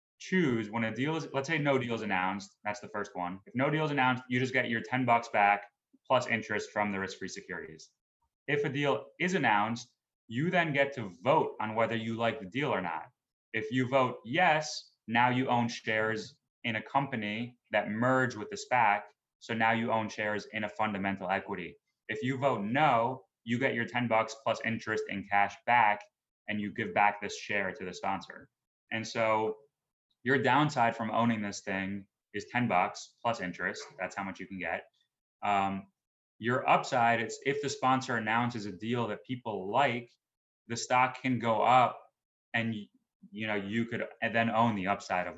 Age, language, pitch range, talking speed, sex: 20-39, English, 105-130 Hz, 190 wpm, male